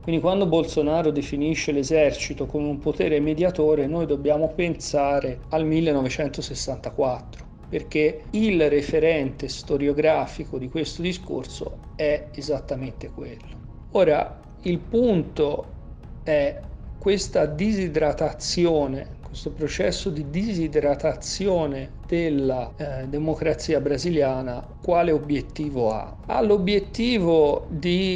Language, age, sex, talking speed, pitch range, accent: Italian, 40-59, male, 95 wpm, 145-175 Hz, native